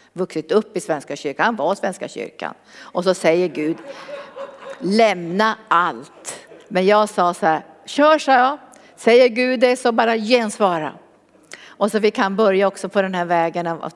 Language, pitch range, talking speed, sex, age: Swedish, 180-245 Hz, 170 wpm, female, 50-69